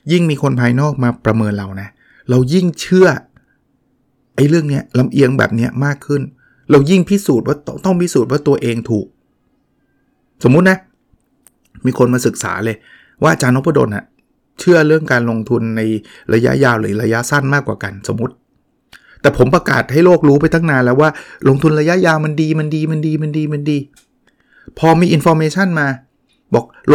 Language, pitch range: Thai, 120-160 Hz